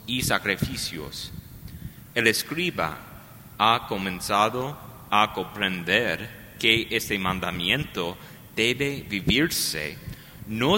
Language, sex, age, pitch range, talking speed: English, male, 30-49, 95-125 Hz, 80 wpm